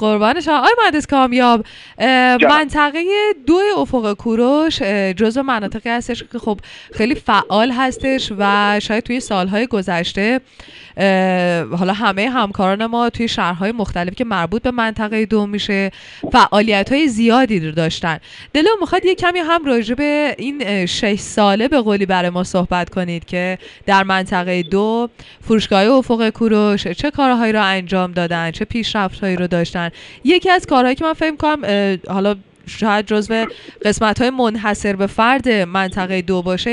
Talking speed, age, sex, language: 145 wpm, 20-39, female, Persian